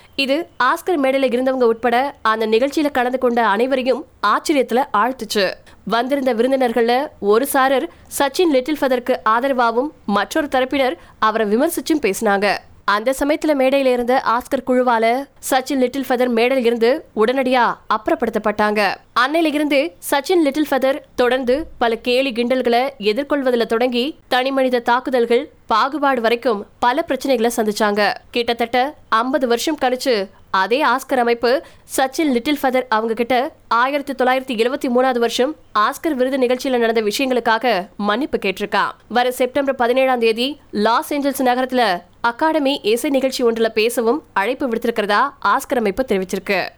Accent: native